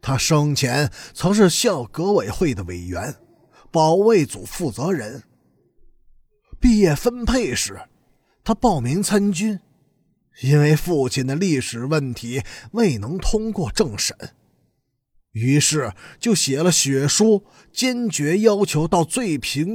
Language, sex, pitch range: Chinese, male, 135-205 Hz